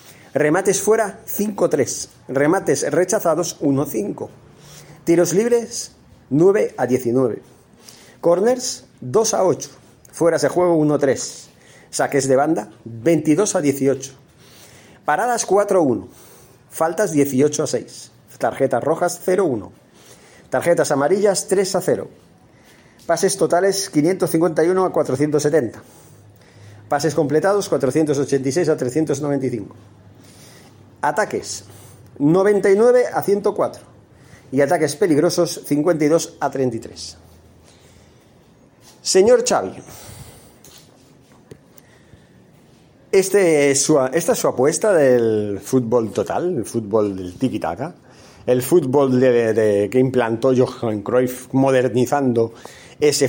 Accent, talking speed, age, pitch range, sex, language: Spanish, 95 wpm, 40-59, 125-175 Hz, male, Spanish